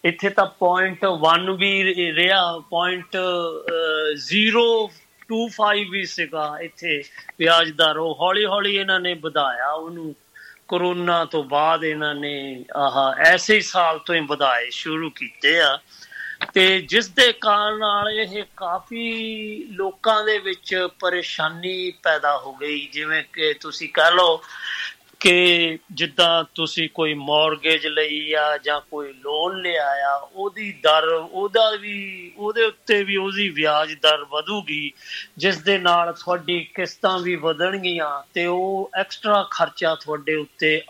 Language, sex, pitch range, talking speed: Punjabi, male, 160-195 Hz, 130 wpm